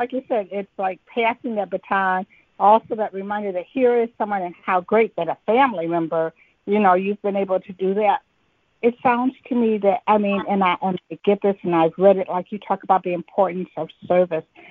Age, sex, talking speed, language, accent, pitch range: 60-79, female, 220 wpm, English, American, 185-225 Hz